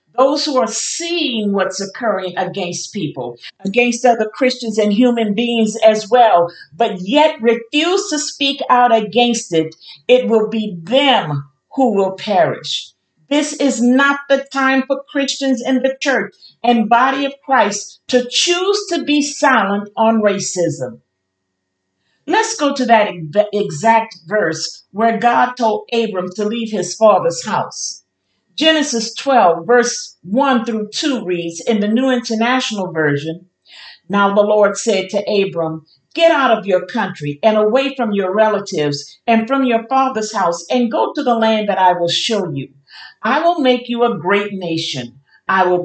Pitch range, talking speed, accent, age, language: 180-255 Hz, 155 wpm, American, 50-69, English